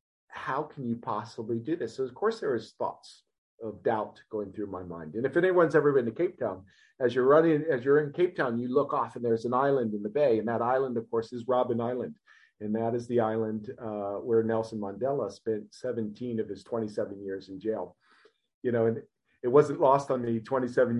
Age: 40-59